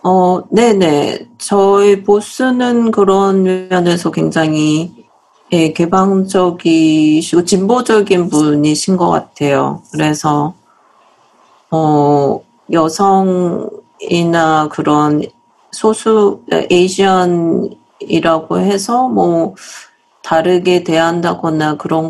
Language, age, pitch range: Korean, 40-59, 155-195 Hz